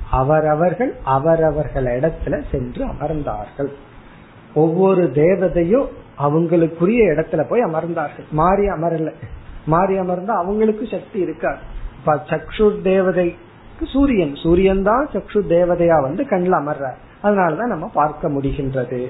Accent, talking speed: native, 95 wpm